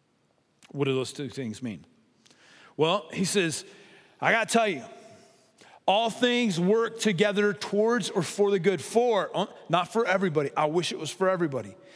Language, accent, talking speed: English, American, 165 wpm